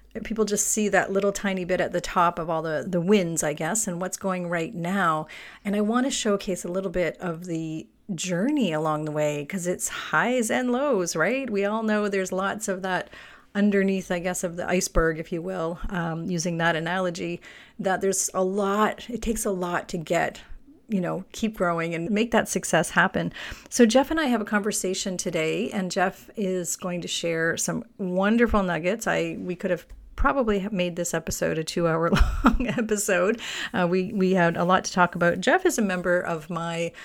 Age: 40-59